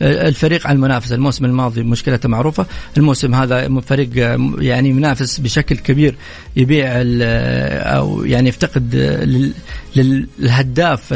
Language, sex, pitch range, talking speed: English, male, 125-155 Hz, 95 wpm